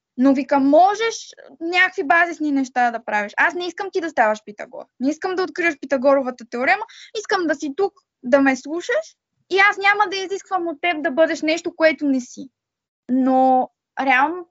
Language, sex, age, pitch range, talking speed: Bulgarian, female, 20-39, 260-340 Hz, 180 wpm